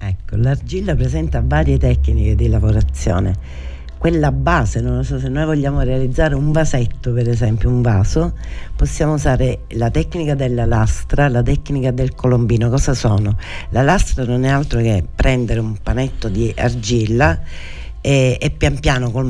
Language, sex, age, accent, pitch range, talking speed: Italian, female, 60-79, native, 115-140 Hz, 150 wpm